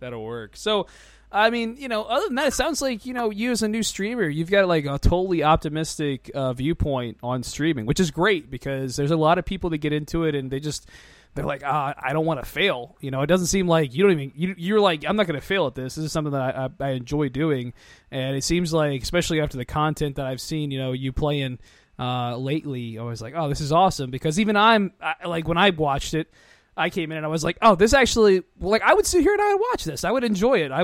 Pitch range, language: 135-180 Hz, English